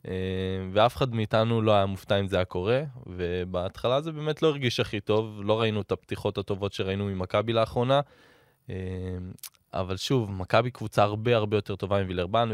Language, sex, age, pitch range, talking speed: Hebrew, male, 20-39, 100-115 Hz, 160 wpm